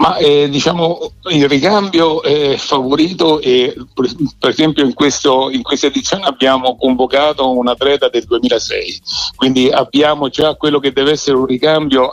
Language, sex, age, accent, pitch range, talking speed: Italian, male, 60-79, native, 125-150 Hz, 160 wpm